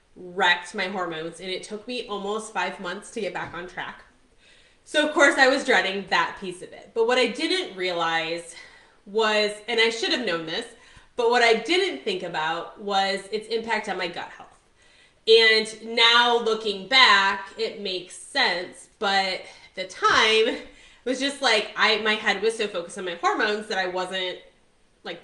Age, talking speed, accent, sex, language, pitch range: 20-39, 185 wpm, American, female, English, 185-250 Hz